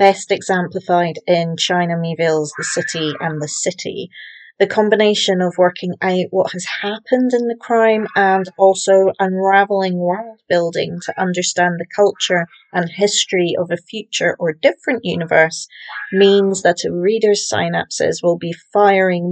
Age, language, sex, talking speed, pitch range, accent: 30-49, English, female, 145 wpm, 175-200 Hz, British